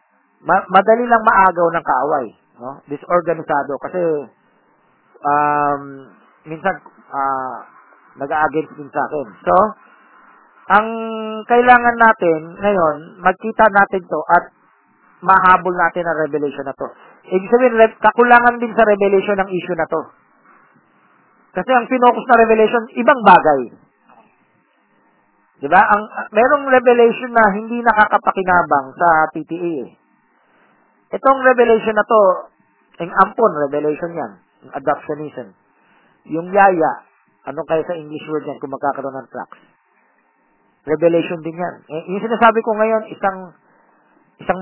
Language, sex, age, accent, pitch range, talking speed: Filipino, male, 40-59, native, 155-210 Hz, 120 wpm